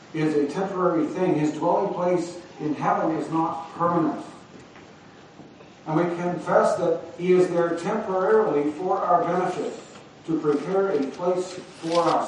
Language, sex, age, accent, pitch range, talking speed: English, male, 50-69, American, 155-195 Hz, 140 wpm